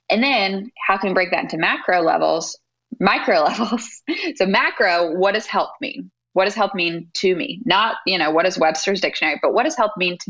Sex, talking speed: female, 215 wpm